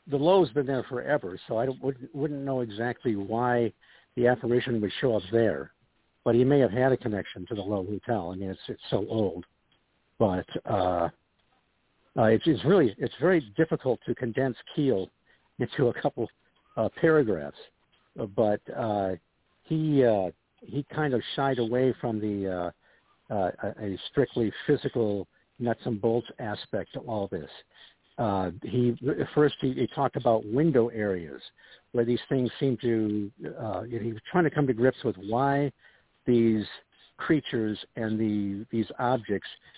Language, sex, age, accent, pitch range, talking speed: English, male, 60-79, American, 110-135 Hz, 160 wpm